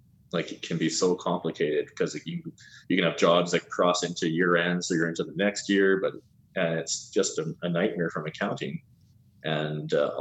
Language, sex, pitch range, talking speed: English, male, 80-105 Hz, 200 wpm